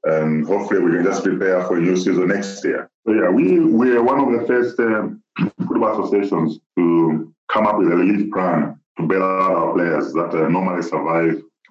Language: English